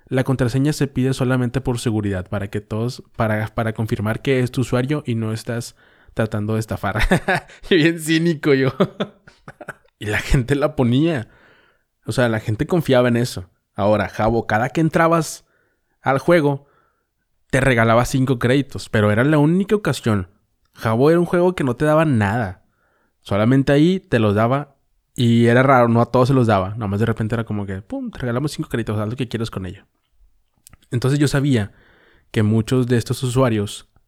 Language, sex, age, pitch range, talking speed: Spanish, male, 20-39, 110-140 Hz, 180 wpm